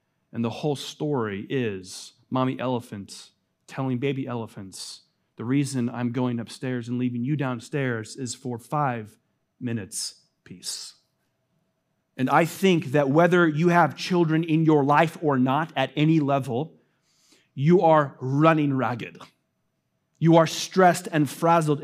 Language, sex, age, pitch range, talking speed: English, male, 40-59, 120-155 Hz, 135 wpm